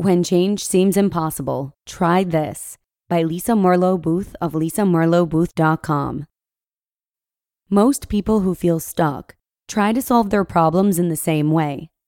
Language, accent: English, American